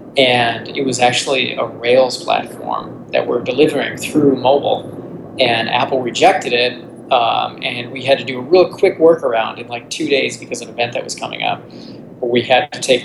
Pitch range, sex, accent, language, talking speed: 120-145 Hz, male, American, English, 200 wpm